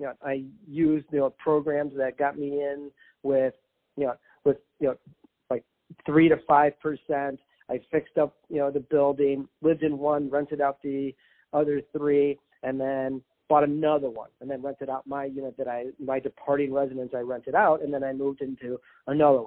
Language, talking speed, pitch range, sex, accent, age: English, 195 wpm, 135-155 Hz, male, American, 40-59